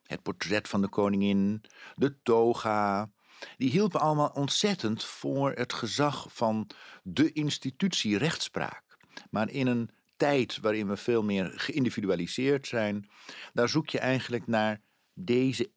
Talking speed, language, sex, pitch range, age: 130 wpm, Dutch, male, 115-160 Hz, 50-69